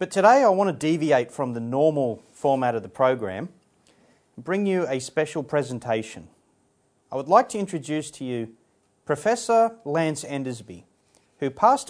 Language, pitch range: English, 120-165 Hz